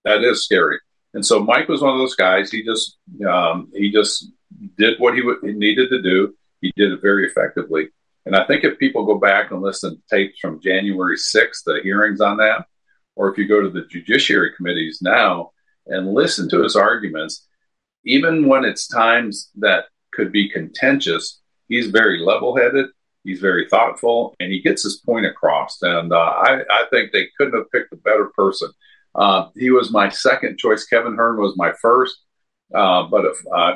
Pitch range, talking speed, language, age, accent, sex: 95-125 Hz, 190 wpm, English, 50-69, American, male